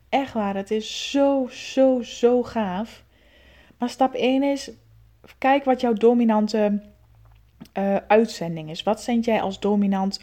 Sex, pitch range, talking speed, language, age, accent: female, 200-245 Hz, 140 wpm, Dutch, 20-39, Dutch